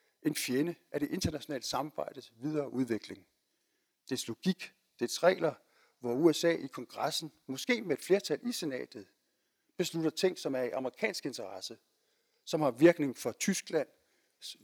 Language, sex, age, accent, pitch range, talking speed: Danish, male, 60-79, native, 135-180 Hz, 140 wpm